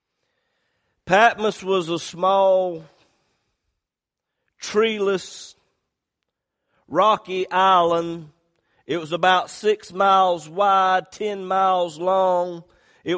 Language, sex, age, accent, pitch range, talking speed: English, male, 50-69, American, 170-205 Hz, 75 wpm